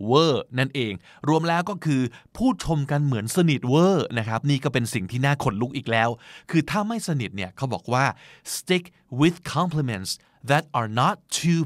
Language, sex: Thai, male